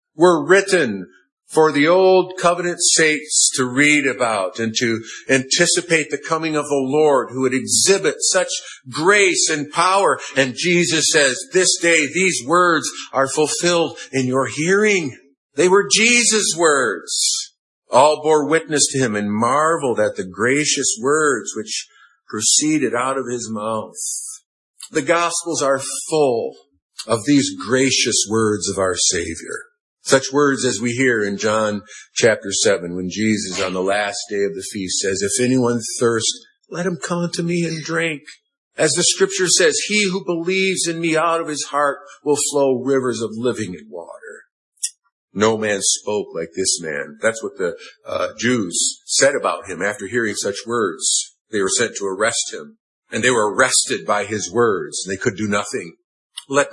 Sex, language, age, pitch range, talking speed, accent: male, English, 50-69, 120-185 Hz, 165 wpm, American